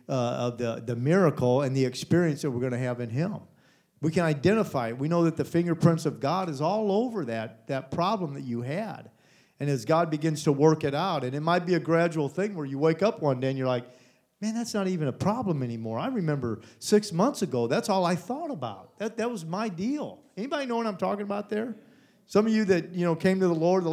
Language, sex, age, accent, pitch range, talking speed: English, male, 40-59, American, 150-205 Hz, 250 wpm